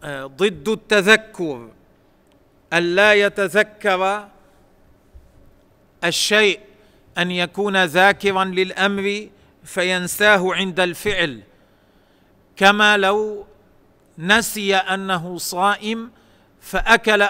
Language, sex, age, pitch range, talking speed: Arabic, male, 40-59, 160-200 Hz, 65 wpm